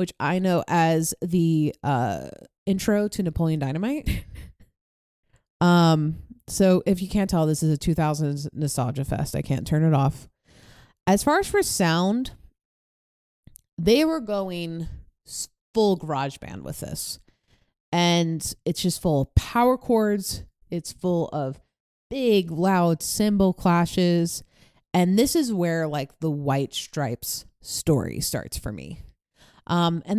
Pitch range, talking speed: 155-205 Hz, 135 wpm